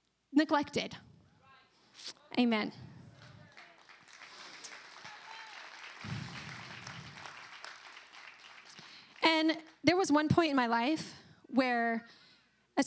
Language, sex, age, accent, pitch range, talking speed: English, female, 30-49, American, 230-295 Hz, 55 wpm